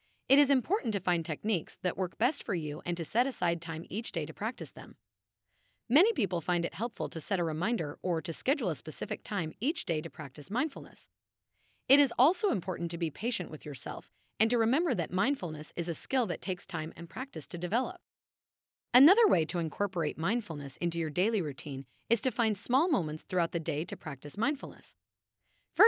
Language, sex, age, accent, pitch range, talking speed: English, female, 30-49, American, 160-235 Hz, 200 wpm